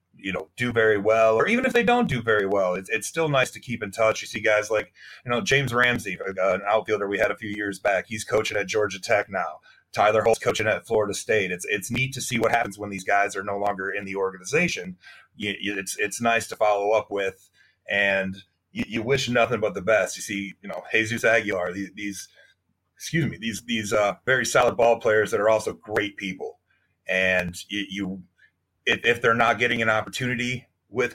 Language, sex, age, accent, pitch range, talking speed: English, male, 30-49, American, 100-125 Hz, 220 wpm